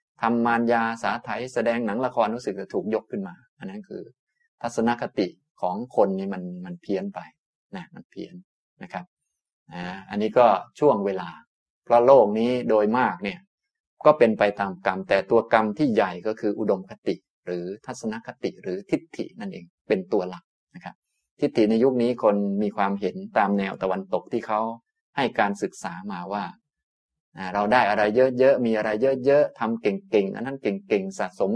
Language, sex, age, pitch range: Thai, male, 20-39, 105-145 Hz